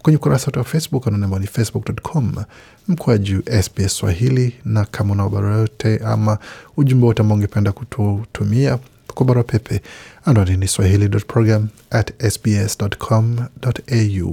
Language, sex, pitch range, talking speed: Swahili, male, 110-130 Hz, 100 wpm